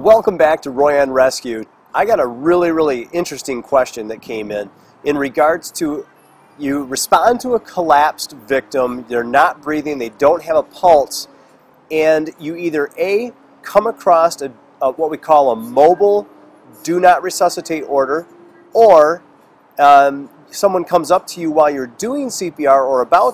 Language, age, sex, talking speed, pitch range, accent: English, 30-49, male, 160 wpm, 140-185 Hz, American